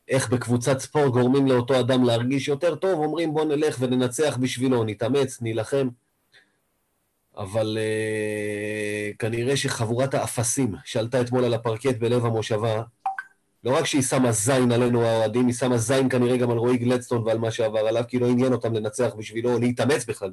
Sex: male